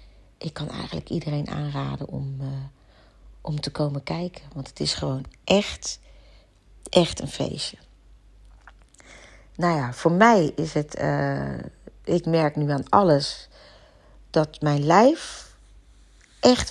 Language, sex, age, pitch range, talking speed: Dutch, female, 40-59, 150-180 Hz, 125 wpm